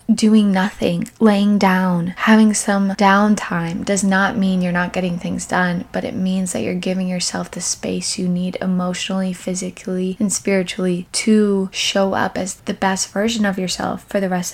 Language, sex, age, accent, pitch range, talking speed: English, female, 10-29, American, 180-200 Hz, 175 wpm